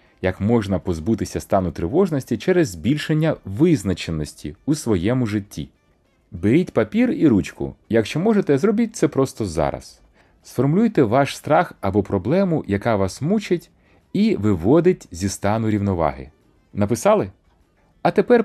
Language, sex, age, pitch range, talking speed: Ukrainian, male, 30-49, 100-160 Hz, 120 wpm